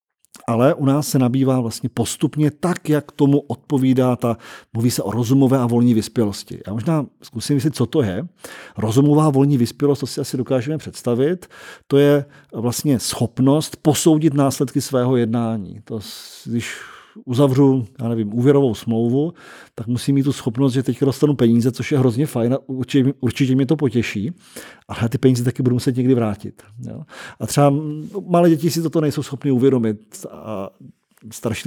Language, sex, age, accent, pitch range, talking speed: Czech, male, 40-59, native, 115-145 Hz, 165 wpm